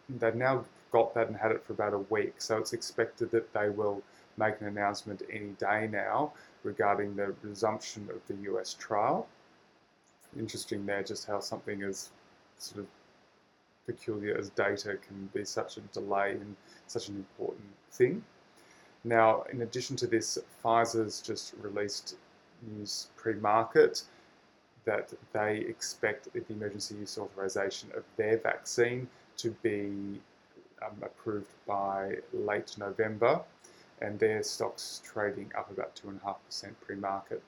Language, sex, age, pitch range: English, male, 20-39, 100-115 Hz